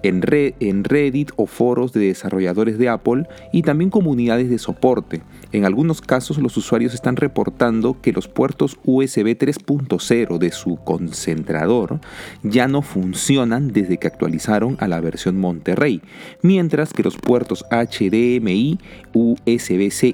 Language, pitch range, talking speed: Spanish, 95-125 Hz, 130 wpm